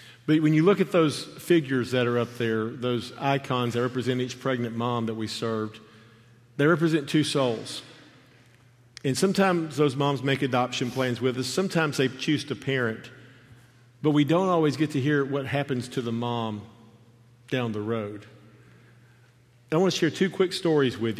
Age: 50-69